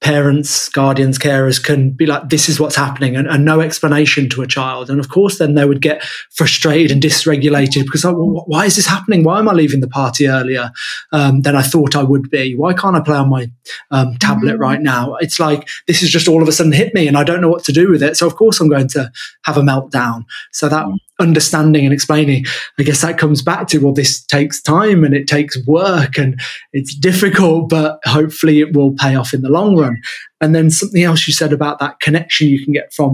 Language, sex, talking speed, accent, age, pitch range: English, male, 235 wpm, British, 20-39, 140-165 Hz